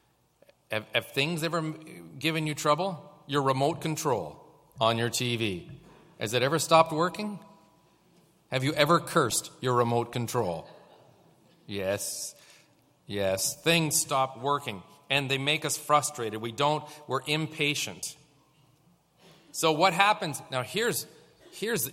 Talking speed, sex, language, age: 120 wpm, male, English, 40-59